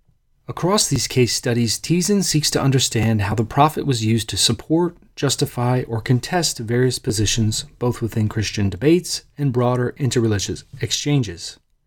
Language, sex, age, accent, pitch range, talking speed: English, male, 30-49, American, 115-145 Hz, 140 wpm